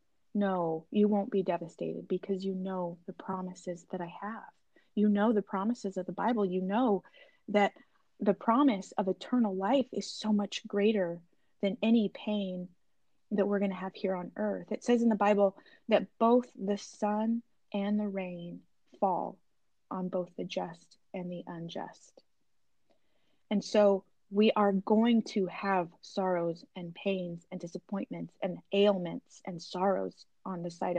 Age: 20-39